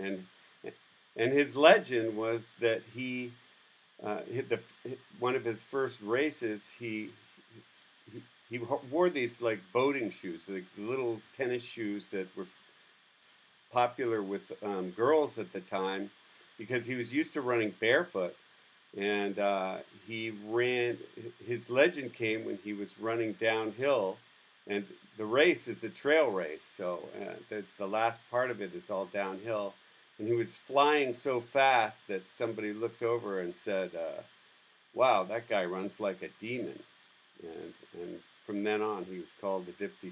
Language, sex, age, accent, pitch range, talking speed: English, male, 50-69, American, 105-125 Hz, 155 wpm